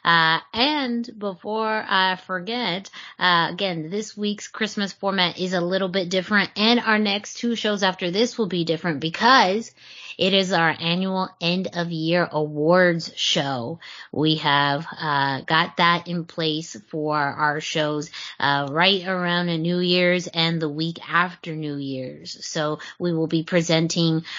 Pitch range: 155-185 Hz